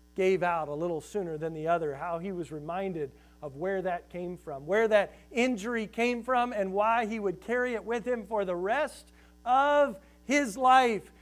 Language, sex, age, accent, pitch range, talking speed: English, male, 40-59, American, 150-220 Hz, 195 wpm